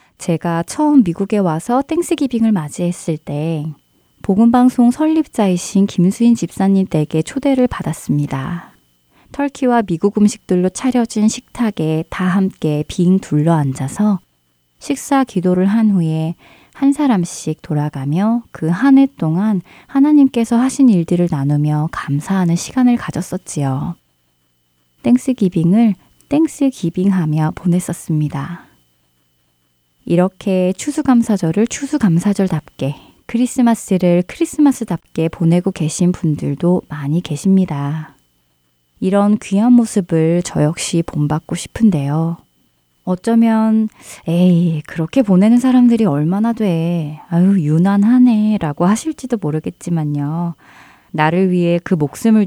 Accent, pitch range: native, 155-225 Hz